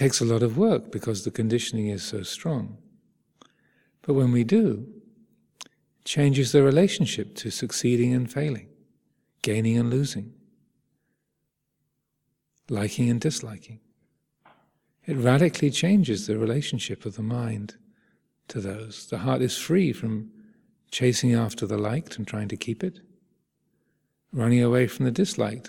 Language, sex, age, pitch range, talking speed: English, male, 40-59, 115-160 Hz, 140 wpm